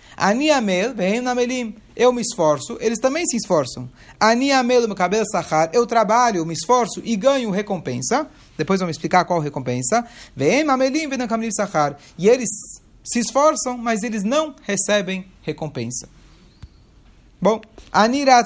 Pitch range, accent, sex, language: 165-235 Hz, Brazilian, male, Portuguese